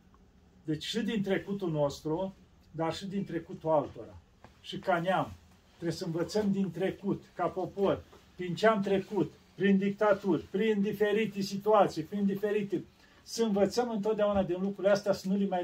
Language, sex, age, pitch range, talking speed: Romanian, male, 40-59, 160-200 Hz, 155 wpm